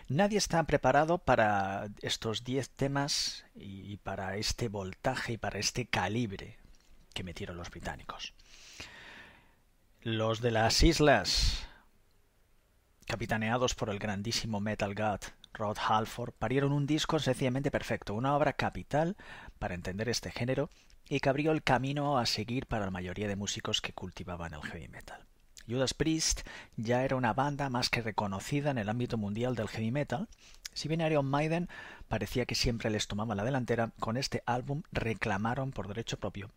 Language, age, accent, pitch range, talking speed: Spanish, 30-49, Spanish, 105-135 Hz, 155 wpm